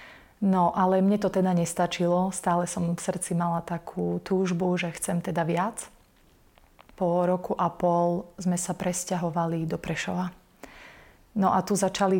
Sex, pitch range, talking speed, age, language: female, 175-190 Hz, 150 wpm, 30-49, Slovak